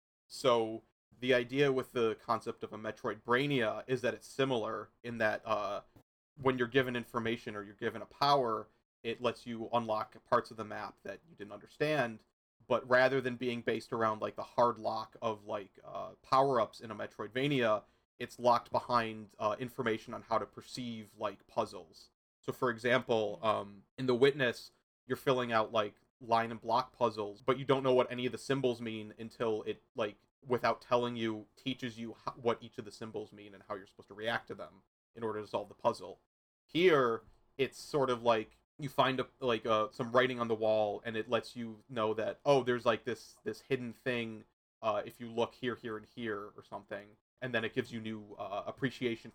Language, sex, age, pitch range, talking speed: English, male, 30-49, 110-125 Hz, 200 wpm